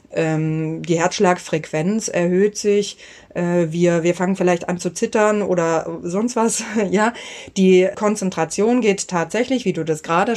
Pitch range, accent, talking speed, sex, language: 160-195 Hz, German, 135 wpm, female, German